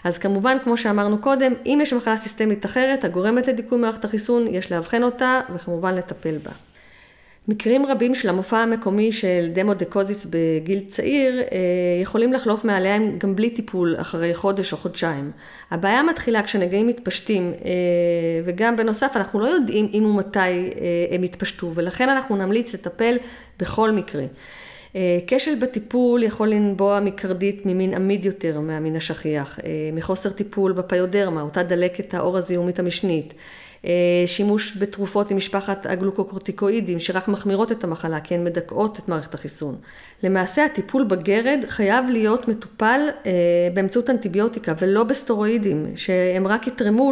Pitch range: 180-225 Hz